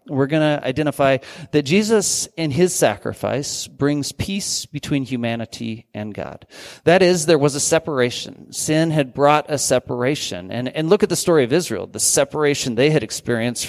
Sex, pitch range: male, 120-155 Hz